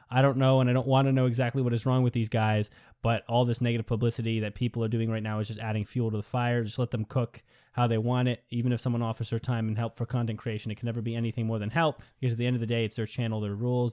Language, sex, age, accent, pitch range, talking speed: English, male, 20-39, American, 115-165 Hz, 315 wpm